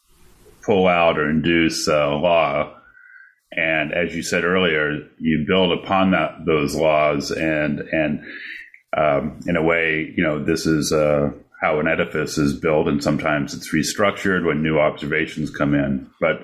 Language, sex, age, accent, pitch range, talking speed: English, male, 30-49, American, 70-90 Hz, 155 wpm